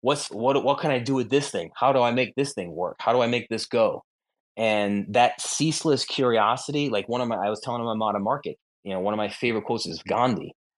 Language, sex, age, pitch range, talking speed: English, male, 20-39, 105-130 Hz, 255 wpm